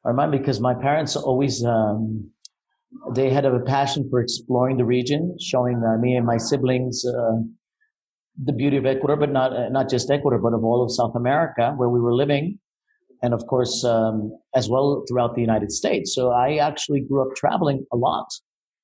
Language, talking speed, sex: English, 190 wpm, male